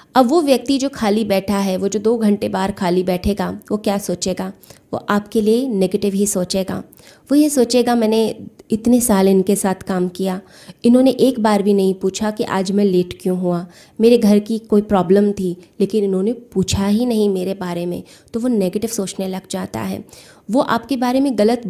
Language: Hindi